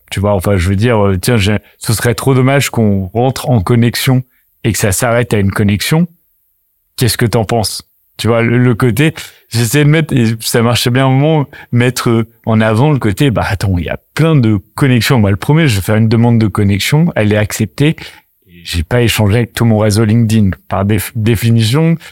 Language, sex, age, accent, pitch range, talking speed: French, male, 30-49, French, 105-130 Hz, 215 wpm